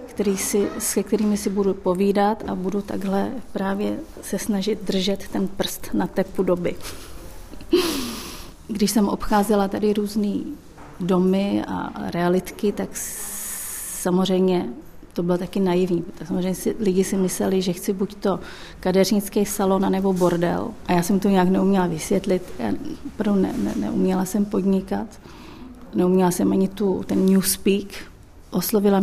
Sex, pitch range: female, 180-205 Hz